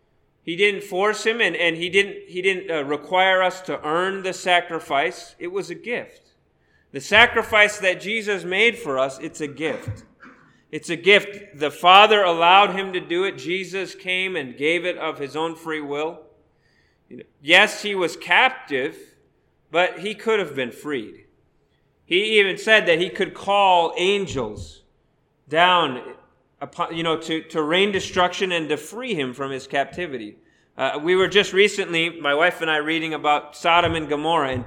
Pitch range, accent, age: 150-195 Hz, American, 30-49